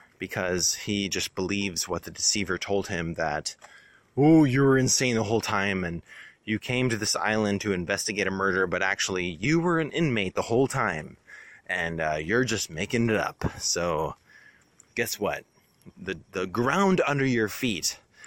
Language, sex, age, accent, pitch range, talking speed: English, male, 20-39, American, 95-120 Hz, 170 wpm